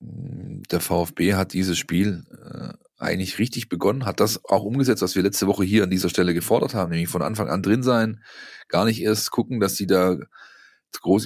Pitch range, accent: 95-120 Hz, German